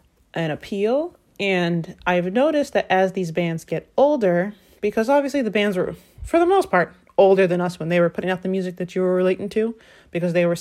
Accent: American